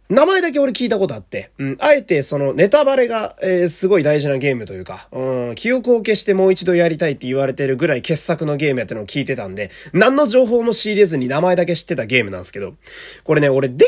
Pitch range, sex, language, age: 135-225 Hz, male, Japanese, 20-39